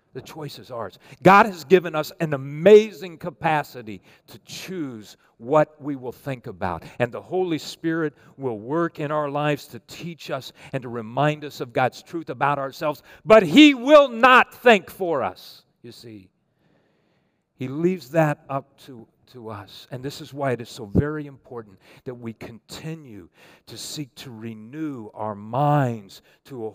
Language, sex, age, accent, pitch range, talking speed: English, male, 50-69, American, 120-160 Hz, 170 wpm